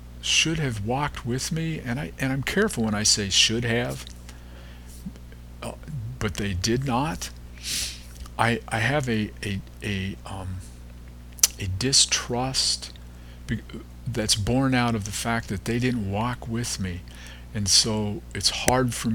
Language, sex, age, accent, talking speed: English, male, 50-69, American, 145 wpm